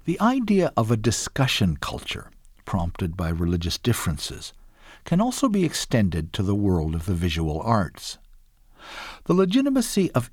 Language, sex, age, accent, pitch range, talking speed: English, male, 60-79, American, 85-130 Hz, 140 wpm